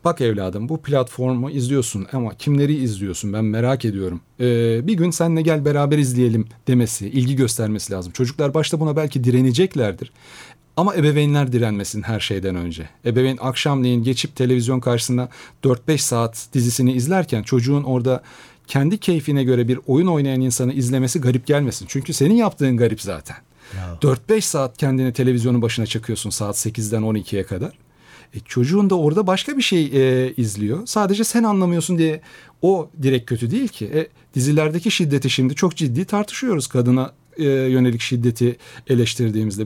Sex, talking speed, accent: male, 150 wpm, native